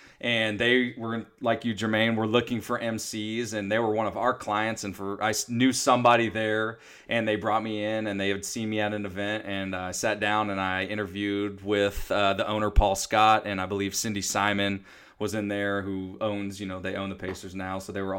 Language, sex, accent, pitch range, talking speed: English, male, American, 100-115 Hz, 230 wpm